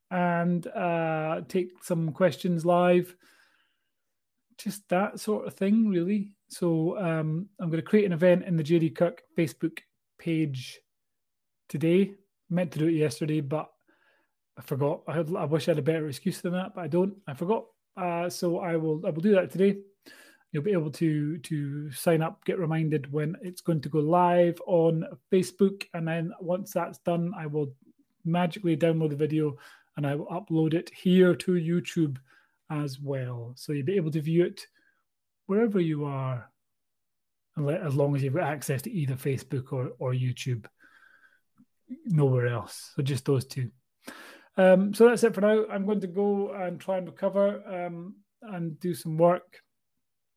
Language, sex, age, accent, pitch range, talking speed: English, male, 30-49, British, 155-190 Hz, 175 wpm